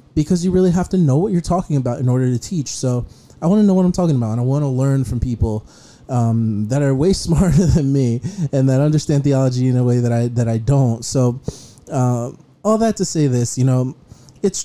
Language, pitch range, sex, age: English, 125-145 Hz, male, 20-39